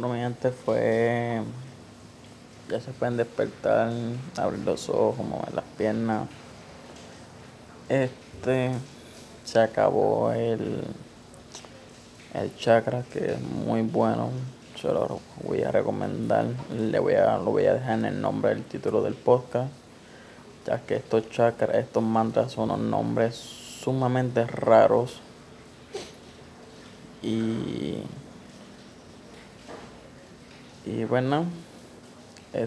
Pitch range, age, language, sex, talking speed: 110-125 Hz, 20-39, English, male, 100 wpm